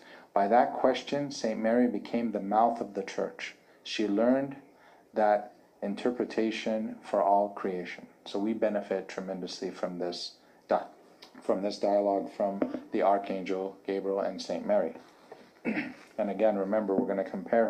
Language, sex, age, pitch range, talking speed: English, male, 40-59, 100-120 Hz, 135 wpm